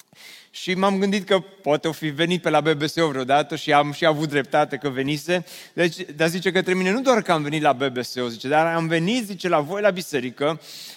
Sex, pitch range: male, 165-205 Hz